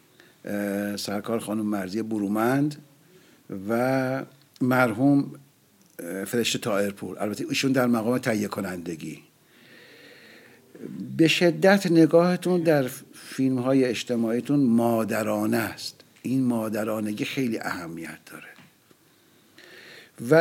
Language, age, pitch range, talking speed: Persian, 60-79, 105-145 Hz, 85 wpm